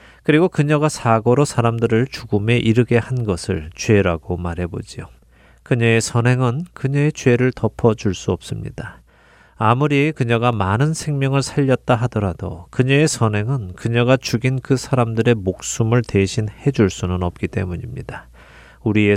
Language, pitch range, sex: Korean, 100-135 Hz, male